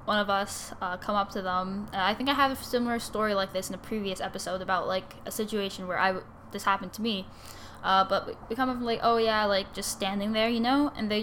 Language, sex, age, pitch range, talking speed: English, female, 10-29, 195-230 Hz, 265 wpm